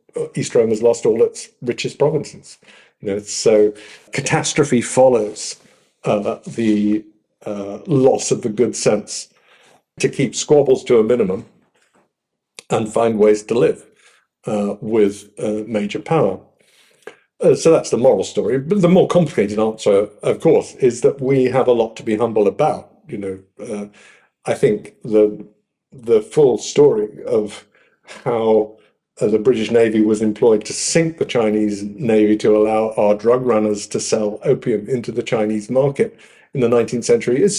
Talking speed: 160 wpm